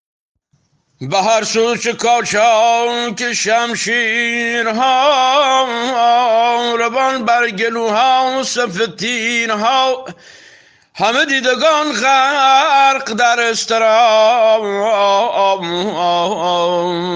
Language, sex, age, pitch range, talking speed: Persian, male, 60-79, 210-255 Hz, 70 wpm